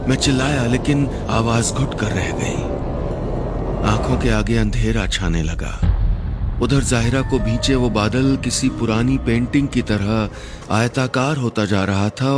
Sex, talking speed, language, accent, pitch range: male, 145 wpm, Hindi, native, 95-125 Hz